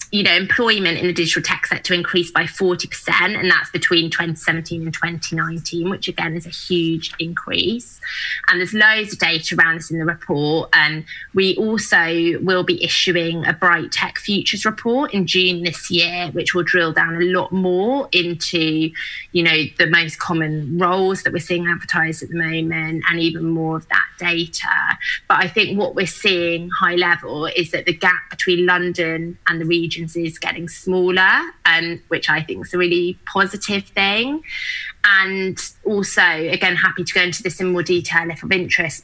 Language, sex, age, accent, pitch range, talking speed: English, female, 20-39, British, 165-185 Hz, 190 wpm